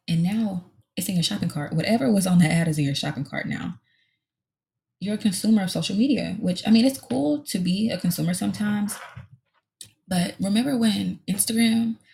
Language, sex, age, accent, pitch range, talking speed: English, female, 20-39, American, 165-225 Hz, 190 wpm